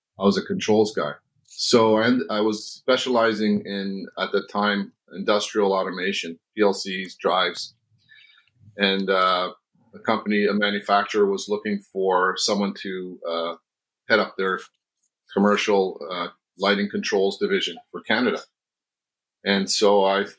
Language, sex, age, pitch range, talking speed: English, male, 40-59, 95-115 Hz, 125 wpm